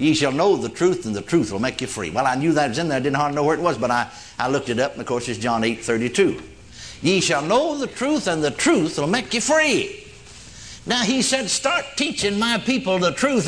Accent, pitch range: American, 110-170 Hz